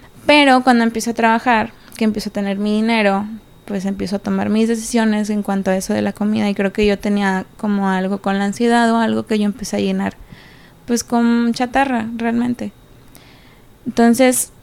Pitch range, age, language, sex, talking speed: 195-235 Hz, 20-39, English, female, 190 wpm